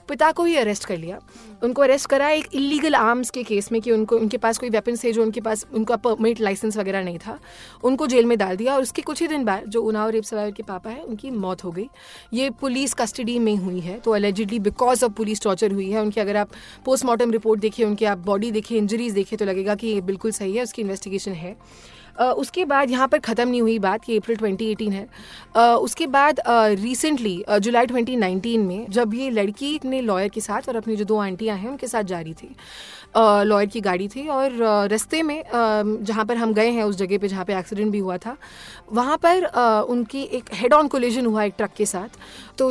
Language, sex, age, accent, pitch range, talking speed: Hindi, female, 30-49, native, 210-245 Hz, 235 wpm